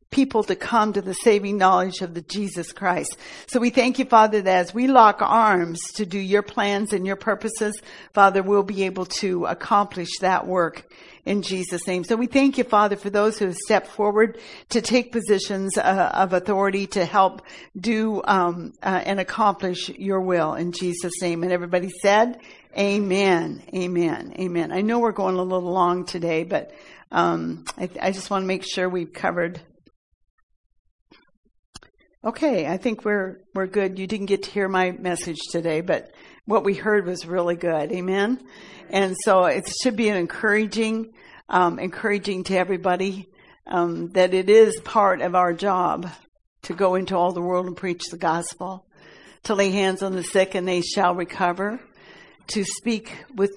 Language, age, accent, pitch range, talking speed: English, 50-69, American, 180-210 Hz, 175 wpm